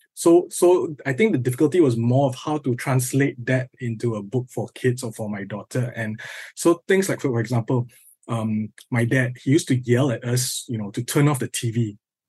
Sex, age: male, 20-39